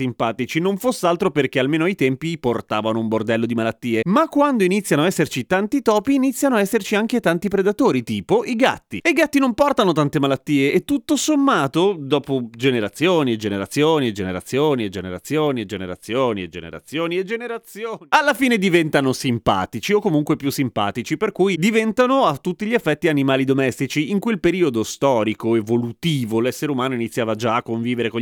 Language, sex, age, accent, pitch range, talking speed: Italian, male, 30-49, native, 125-205 Hz, 180 wpm